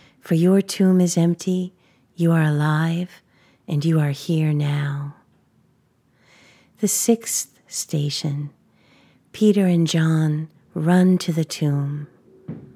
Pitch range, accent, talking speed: 145-180 Hz, American, 110 wpm